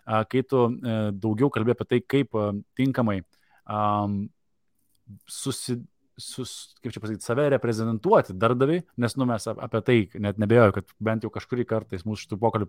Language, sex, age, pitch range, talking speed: English, male, 20-39, 105-125 Hz, 150 wpm